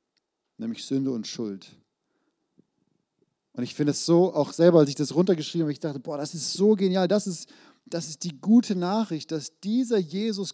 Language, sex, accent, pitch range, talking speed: German, male, German, 175-235 Hz, 190 wpm